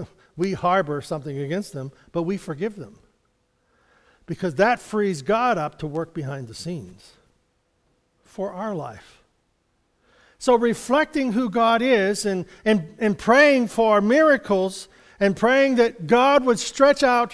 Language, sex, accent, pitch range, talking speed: English, male, American, 175-240 Hz, 140 wpm